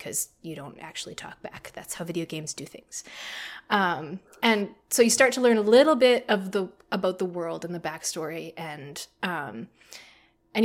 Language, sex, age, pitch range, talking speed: English, female, 20-39, 185-225 Hz, 185 wpm